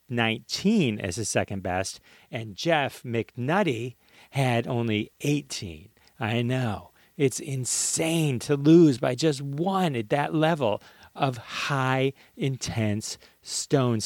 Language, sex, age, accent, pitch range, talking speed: English, male, 40-59, American, 105-160 Hz, 115 wpm